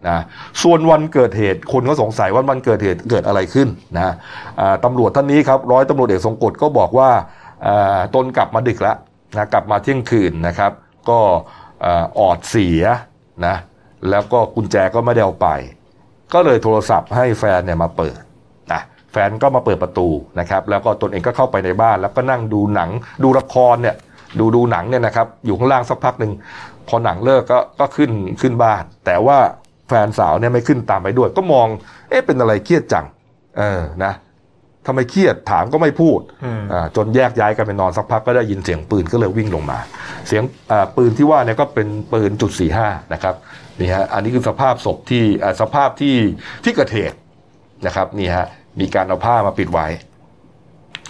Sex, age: male, 60-79